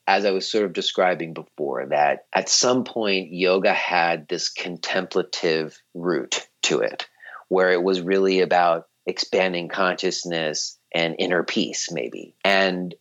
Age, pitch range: 40-59, 95-115 Hz